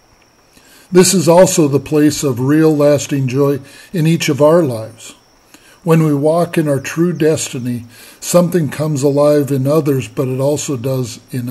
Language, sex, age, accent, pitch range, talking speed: English, male, 50-69, American, 130-150 Hz, 160 wpm